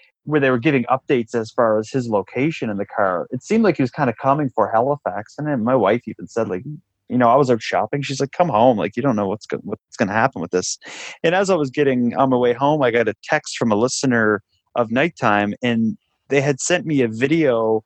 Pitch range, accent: 110-140 Hz, American